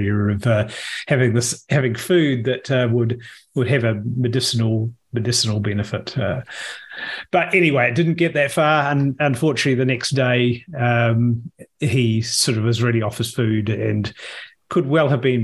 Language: English